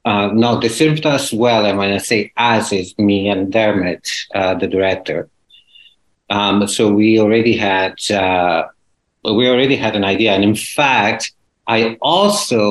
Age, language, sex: 50-69, English, male